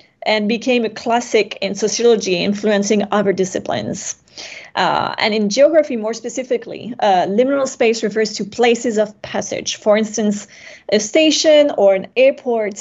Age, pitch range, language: 30-49, 200-250 Hz, English